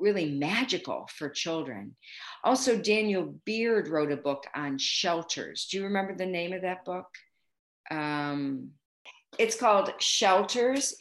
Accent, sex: American, female